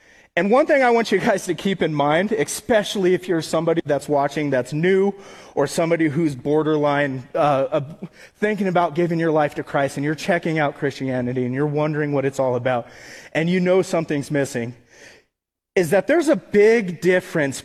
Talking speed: 185 wpm